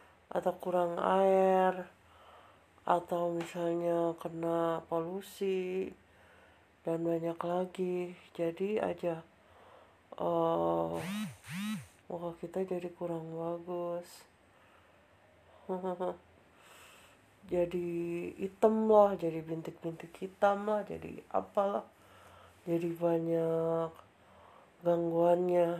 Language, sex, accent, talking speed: Indonesian, female, native, 70 wpm